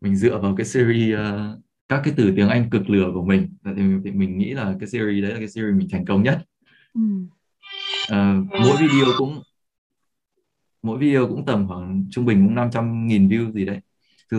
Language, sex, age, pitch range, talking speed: Vietnamese, male, 20-39, 100-120 Hz, 200 wpm